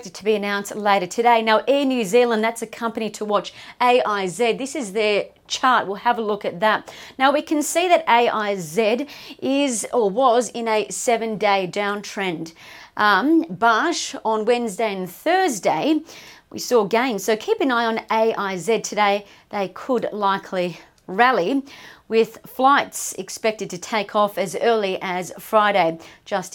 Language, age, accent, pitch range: English, 40-59, Australian, 200-250 Hz